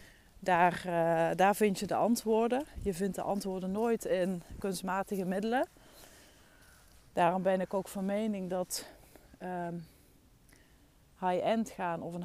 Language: Dutch